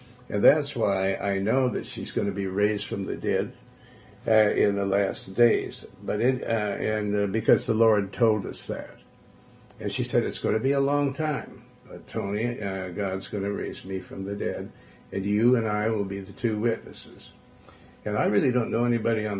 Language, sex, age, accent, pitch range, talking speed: English, male, 60-79, American, 100-125 Hz, 205 wpm